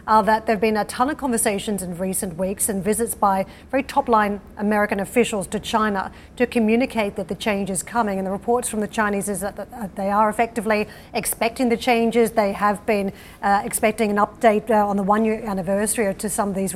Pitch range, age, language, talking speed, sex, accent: 200-225 Hz, 40-59, English, 220 wpm, female, Australian